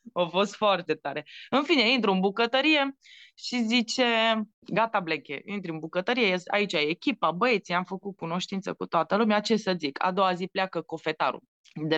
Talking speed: 175 wpm